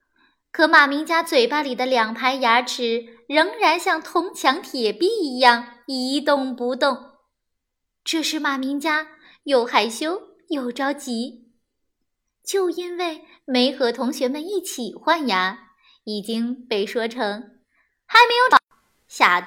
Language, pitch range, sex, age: Chinese, 240-350 Hz, female, 20-39